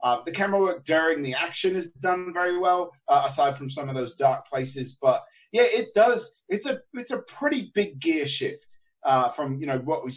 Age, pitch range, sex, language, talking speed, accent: 30-49, 145-220 Hz, male, English, 220 wpm, British